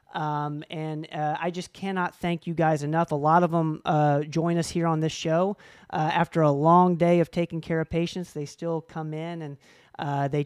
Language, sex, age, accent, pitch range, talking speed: English, male, 40-59, American, 150-170 Hz, 220 wpm